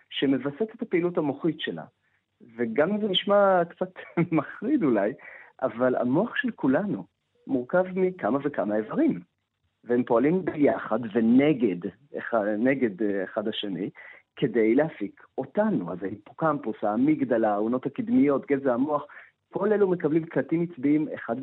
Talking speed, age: 120 wpm, 40-59